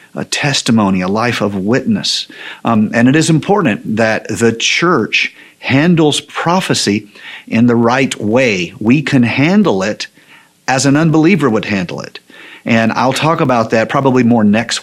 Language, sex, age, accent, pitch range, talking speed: English, male, 50-69, American, 110-135 Hz, 155 wpm